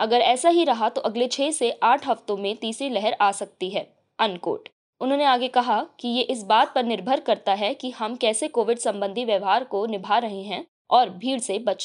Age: 20-39